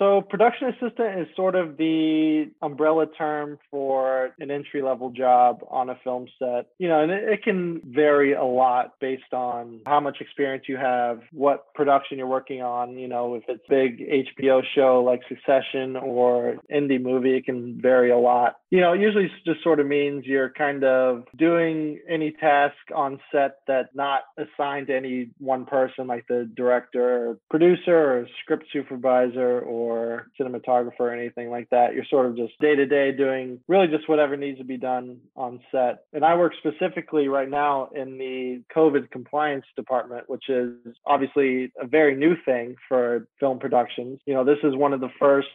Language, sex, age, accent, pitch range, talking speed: English, male, 20-39, American, 125-145 Hz, 180 wpm